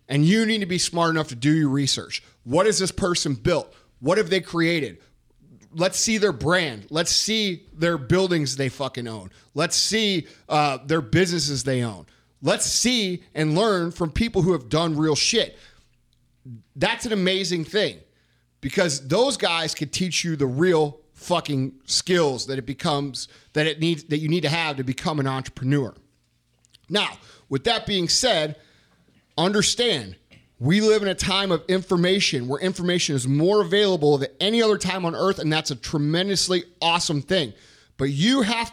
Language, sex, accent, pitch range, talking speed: English, male, American, 135-180 Hz, 170 wpm